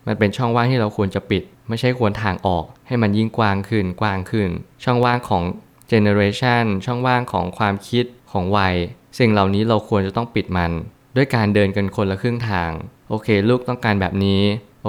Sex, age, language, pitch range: male, 20-39, Thai, 95-115 Hz